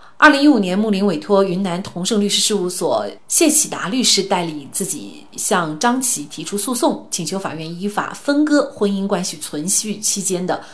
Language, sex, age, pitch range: Chinese, female, 30-49, 170-230 Hz